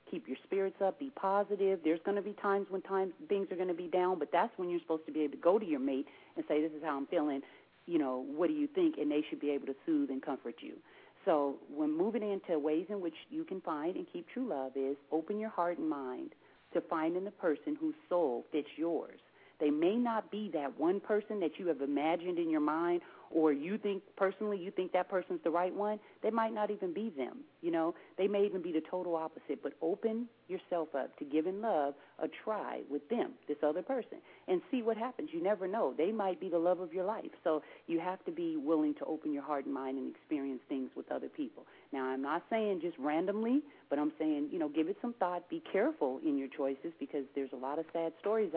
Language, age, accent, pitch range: English, 40-59, American, 150-210 Hz